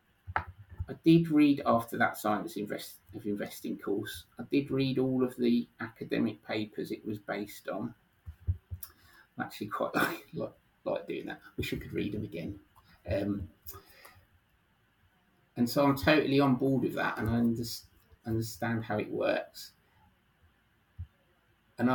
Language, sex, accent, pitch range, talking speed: English, male, British, 100-120 Hz, 145 wpm